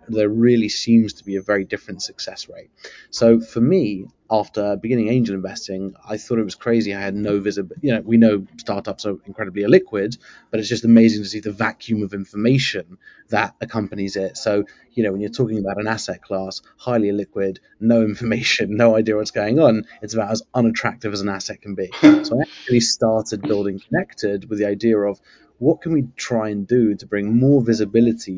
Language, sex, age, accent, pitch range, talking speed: English, male, 30-49, British, 100-115 Hz, 200 wpm